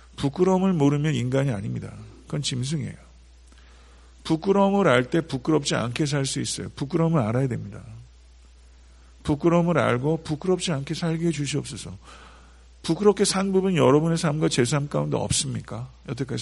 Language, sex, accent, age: Korean, male, native, 50-69